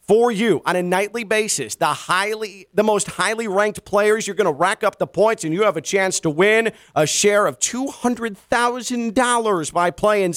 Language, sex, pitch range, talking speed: English, male, 145-210 Hz, 190 wpm